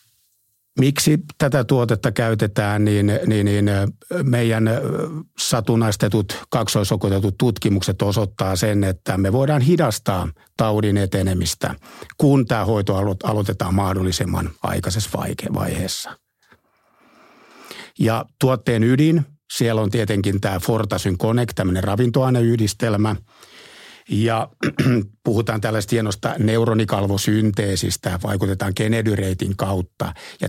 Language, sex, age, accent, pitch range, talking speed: Finnish, male, 60-79, native, 100-120 Hz, 95 wpm